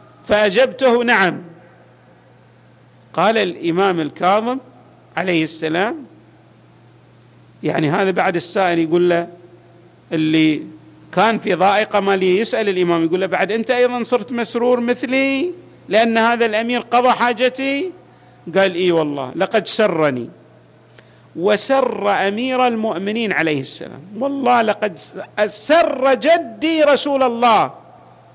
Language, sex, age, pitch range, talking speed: Arabic, male, 50-69, 160-245 Hz, 105 wpm